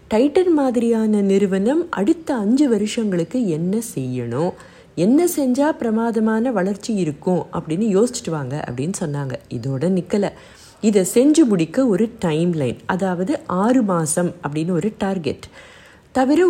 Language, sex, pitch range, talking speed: Tamil, female, 175-255 Hz, 120 wpm